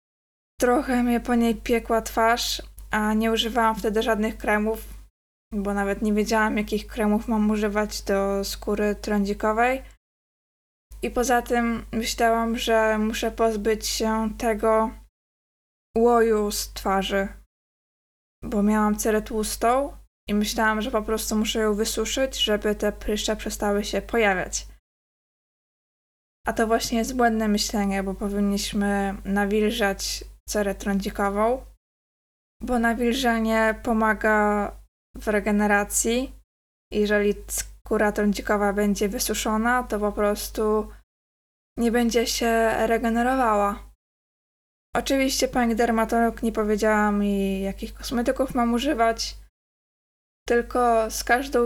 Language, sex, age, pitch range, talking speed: Polish, female, 20-39, 210-235 Hz, 110 wpm